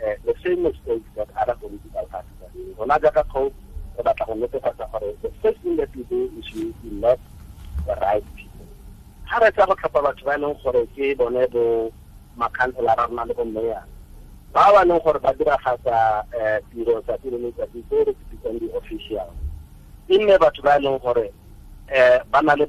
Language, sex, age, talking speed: English, male, 50-69, 130 wpm